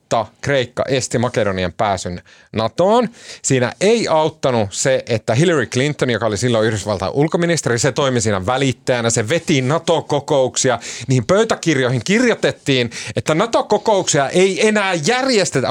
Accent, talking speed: native, 120 wpm